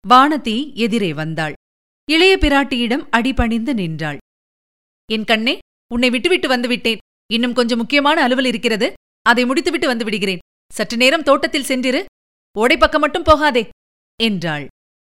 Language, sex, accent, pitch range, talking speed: Tamil, female, native, 230-290 Hz, 120 wpm